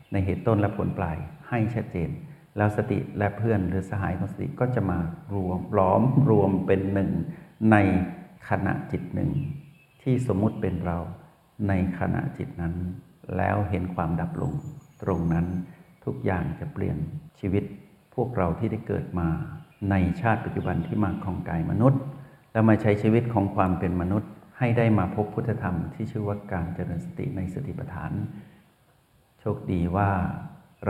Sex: male